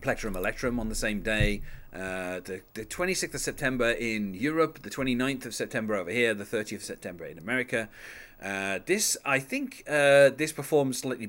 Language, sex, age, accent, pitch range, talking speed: English, male, 30-49, British, 105-140 Hz, 180 wpm